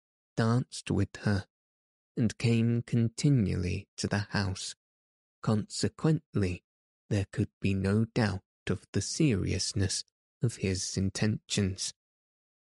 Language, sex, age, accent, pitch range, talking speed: English, male, 20-39, British, 95-115 Hz, 100 wpm